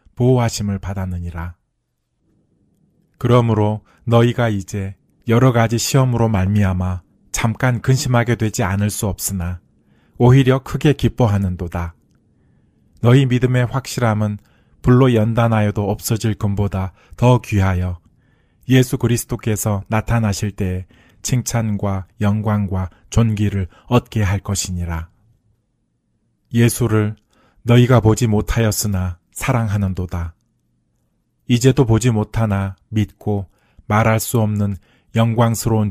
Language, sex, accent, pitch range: Korean, male, native, 100-120 Hz